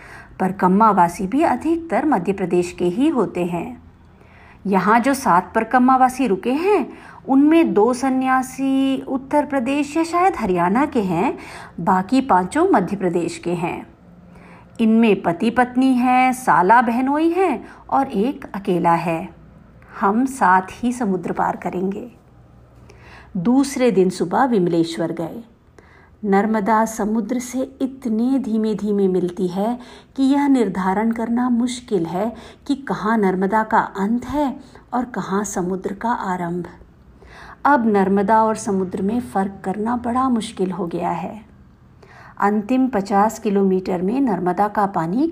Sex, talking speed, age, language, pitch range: female, 130 wpm, 50-69, Hindi, 185-255 Hz